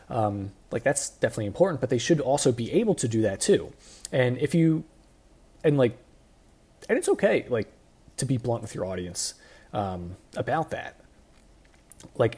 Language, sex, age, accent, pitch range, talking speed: English, male, 30-49, American, 110-170 Hz, 165 wpm